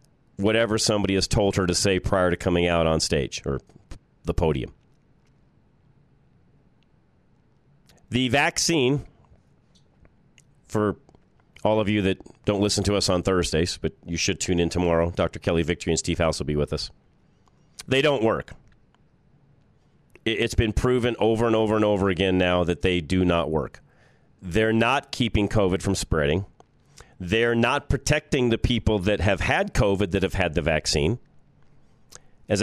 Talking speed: 155 wpm